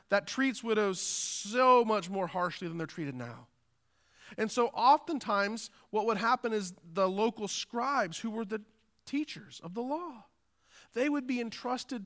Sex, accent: male, American